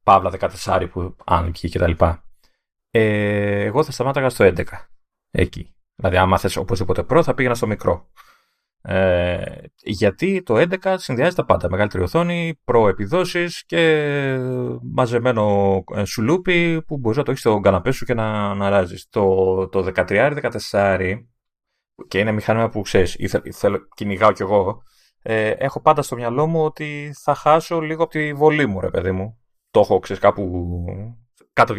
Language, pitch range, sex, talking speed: Greek, 95-150 Hz, male, 150 wpm